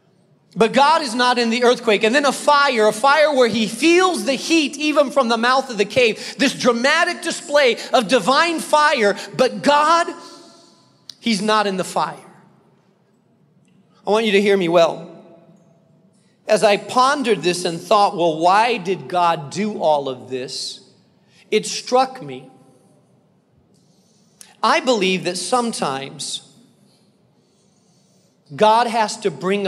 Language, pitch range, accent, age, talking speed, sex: English, 180-235 Hz, American, 40-59, 140 wpm, male